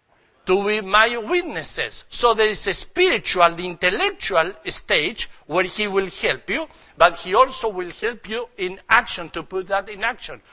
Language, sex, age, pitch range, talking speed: English, male, 60-79, 185-270 Hz, 165 wpm